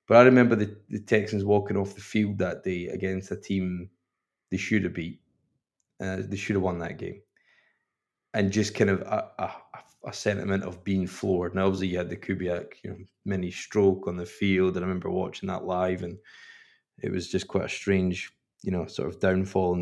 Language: English